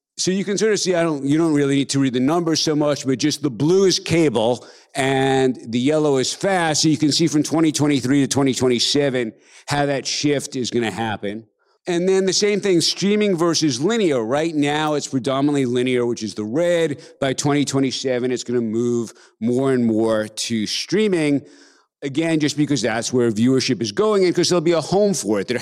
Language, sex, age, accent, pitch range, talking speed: English, male, 50-69, American, 125-160 Hz, 205 wpm